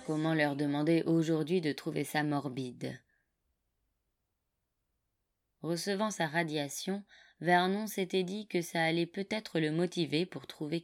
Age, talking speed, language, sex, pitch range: 20-39, 120 wpm, French, female, 145-175 Hz